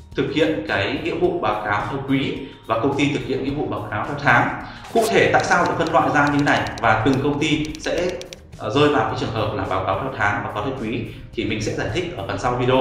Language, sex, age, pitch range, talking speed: Vietnamese, male, 20-39, 115-145 Hz, 275 wpm